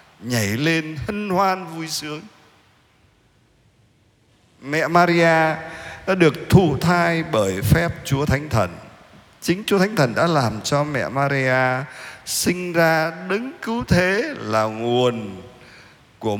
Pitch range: 115-165 Hz